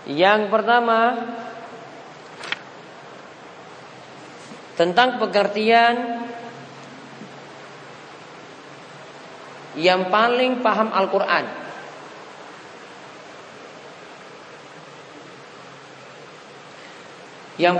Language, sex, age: Malay, male, 40-59